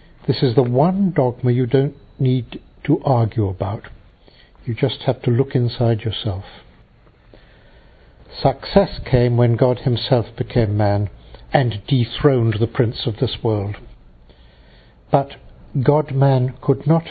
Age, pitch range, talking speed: 60-79, 110-145 Hz, 125 wpm